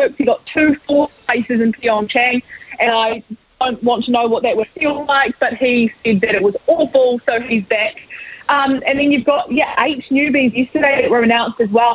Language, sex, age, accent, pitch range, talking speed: English, female, 20-39, Australian, 220-260 Hz, 210 wpm